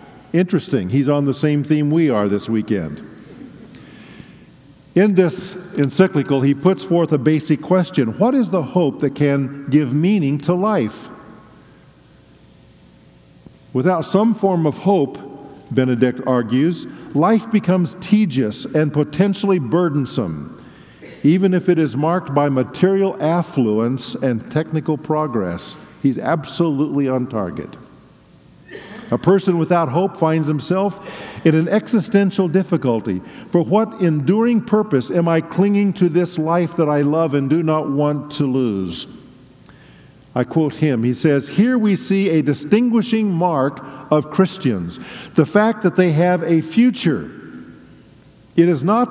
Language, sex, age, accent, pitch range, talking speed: English, male, 50-69, American, 140-185 Hz, 135 wpm